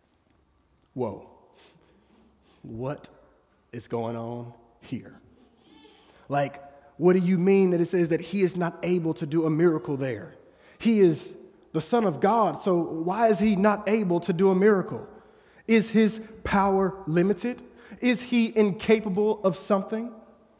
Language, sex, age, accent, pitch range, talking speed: English, male, 20-39, American, 175-215 Hz, 145 wpm